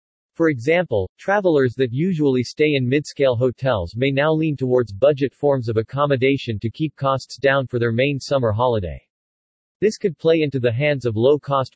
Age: 40-59